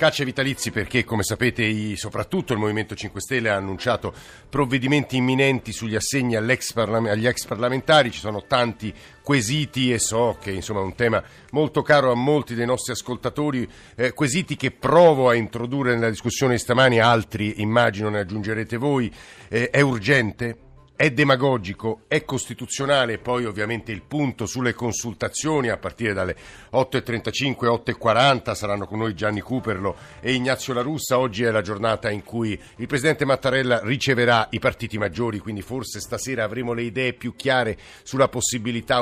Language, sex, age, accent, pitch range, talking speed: Italian, male, 50-69, native, 110-130 Hz, 150 wpm